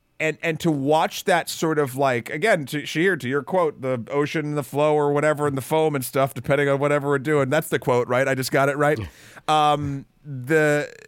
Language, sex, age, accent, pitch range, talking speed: English, male, 30-49, American, 130-170 Hz, 220 wpm